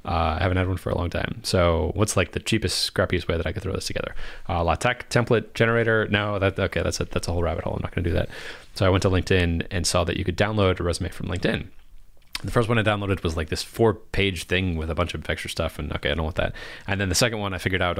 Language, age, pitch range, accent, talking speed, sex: English, 30-49, 85-110 Hz, American, 290 wpm, male